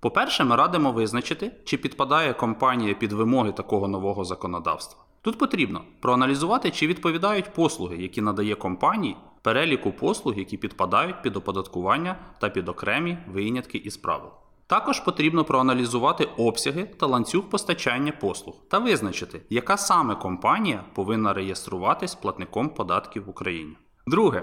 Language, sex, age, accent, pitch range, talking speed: Ukrainian, male, 20-39, native, 100-155 Hz, 130 wpm